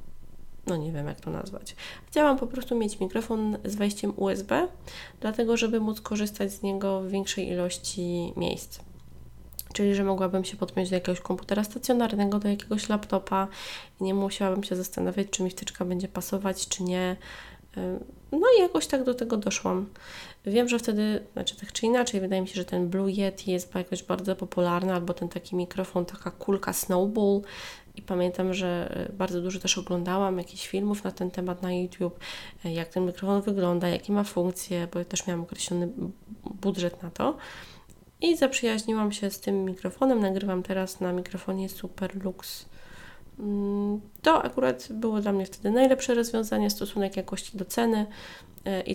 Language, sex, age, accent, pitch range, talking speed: Polish, female, 20-39, native, 180-210 Hz, 165 wpm